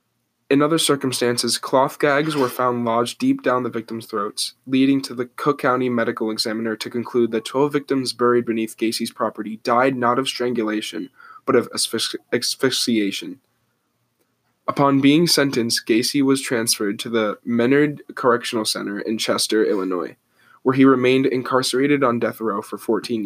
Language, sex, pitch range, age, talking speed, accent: English, male, 115-140 Hz, 10-29, 150 wpm, American